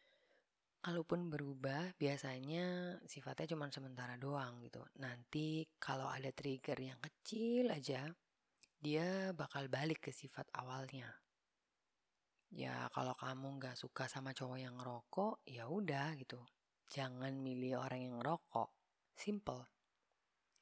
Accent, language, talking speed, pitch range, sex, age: native, Indonesian, 115 wpm, 135-160 Hz, female, 30-49